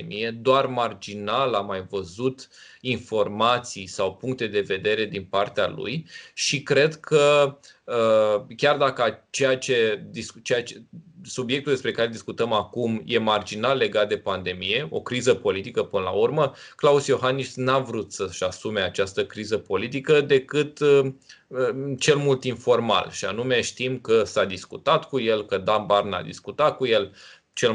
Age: 20-39